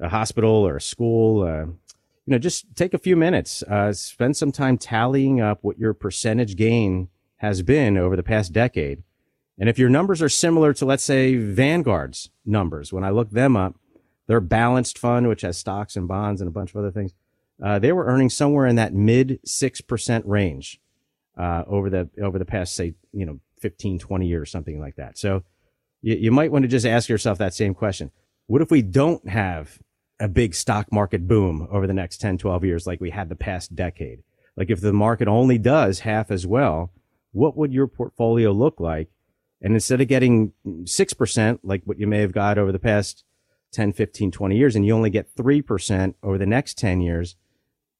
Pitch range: 95-125 Hz